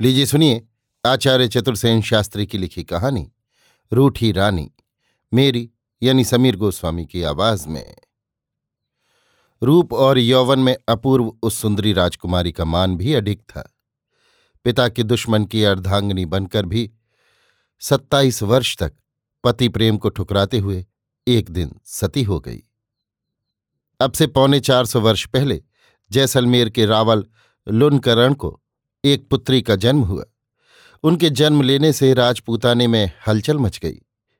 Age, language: 50-69, Hindi